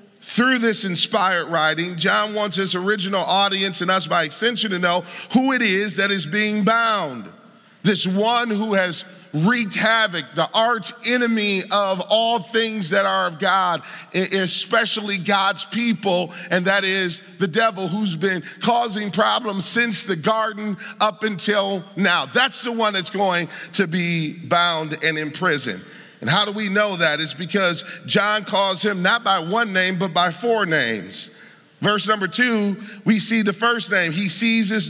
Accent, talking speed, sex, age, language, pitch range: American, 165 wpm, male, 40-59, English, 180-220 Hz